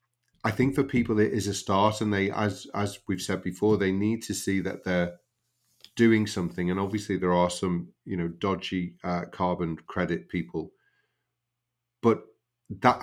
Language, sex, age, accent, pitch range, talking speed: English, male, 40-59, British, 85-105 Hz, 170 wpm